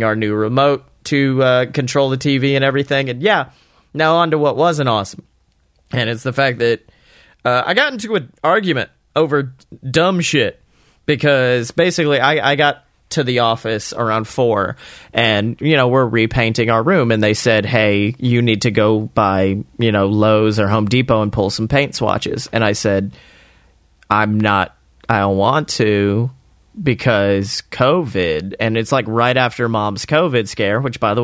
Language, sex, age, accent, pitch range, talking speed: English, male, 30-49, American, 115-145 Hz, 175 wpm